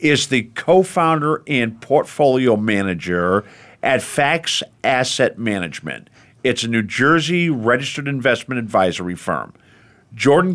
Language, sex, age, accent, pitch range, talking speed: English, male, 50-69, American, 110-140 Hz, 110 wpm